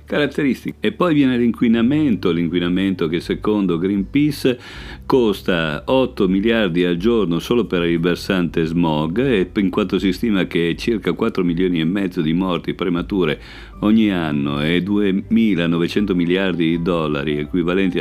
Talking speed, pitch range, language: 135 wpm, 80-105 Hz, Italian